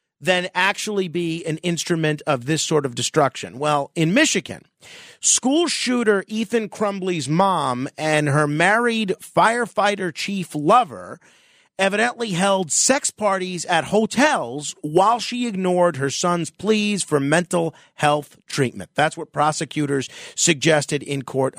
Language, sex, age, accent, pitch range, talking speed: English, male, 40-59, American, 150-205 Hz, 130 wpm